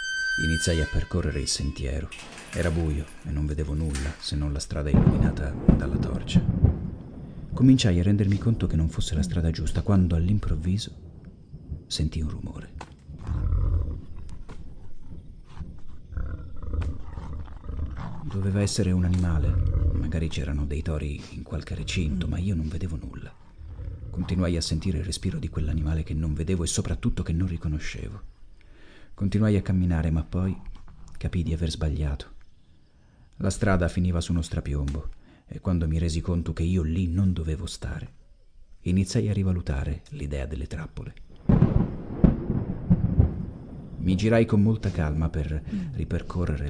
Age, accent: 40-59, native